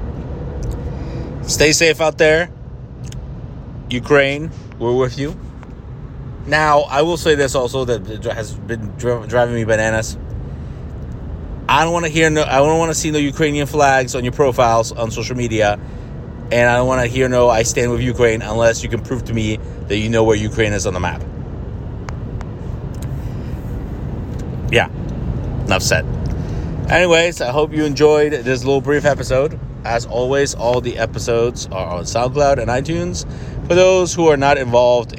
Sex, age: male, 30-49